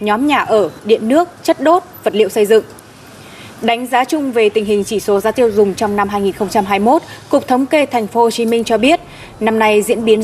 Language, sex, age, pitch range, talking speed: Vietnamese, female, 20-39, 205-275 Hz, 230 wpm